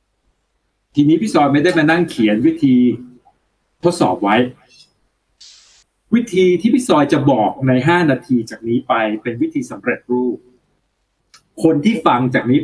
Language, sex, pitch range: Thai, male, 125-190 Hz